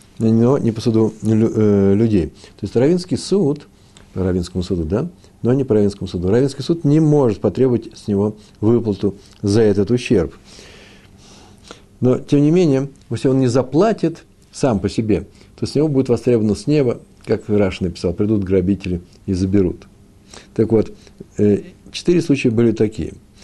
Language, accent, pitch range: Russian, native, 95-115 Hz